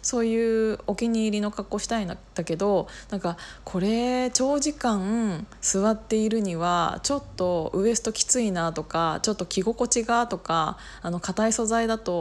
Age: 20-39